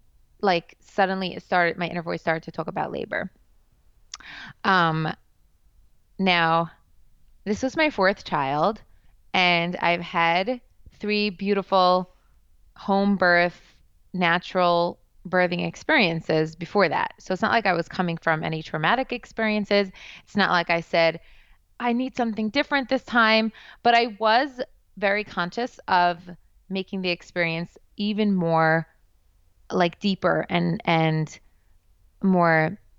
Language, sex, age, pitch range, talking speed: English, female, 20-39, 160-195 Hz, 125 wpm